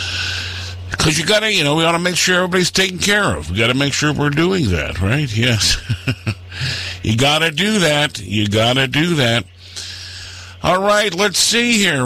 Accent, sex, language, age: American, male, English, 50-69